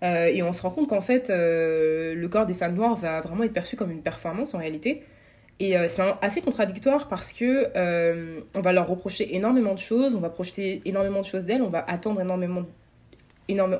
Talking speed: 220 wpm